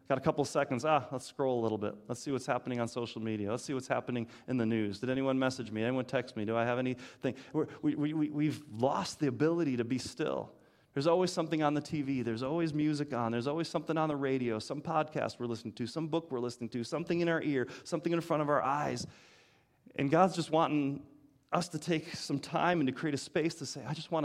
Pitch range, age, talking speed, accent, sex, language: 120-150 Hz, 30-49, 240 wpm, American, male, English